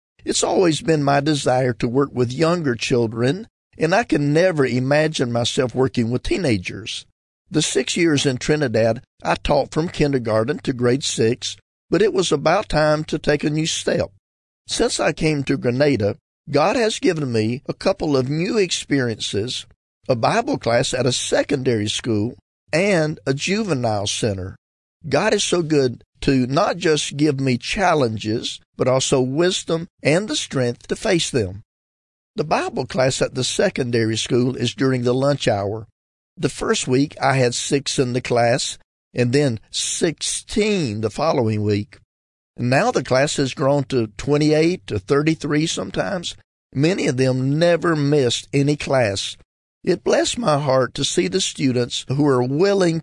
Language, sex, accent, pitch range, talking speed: English, male, American, 115-155 Hz, 160 wpm